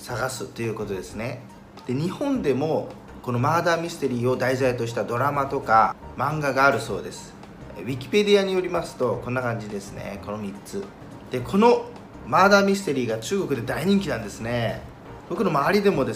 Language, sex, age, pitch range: Japanese, male, 40-59, 120-190 Hz